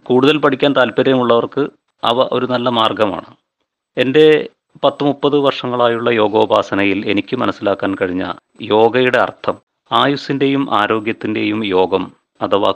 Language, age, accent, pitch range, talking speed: Malayalam, 30-49, native, 110-130 Hz, 100 wpm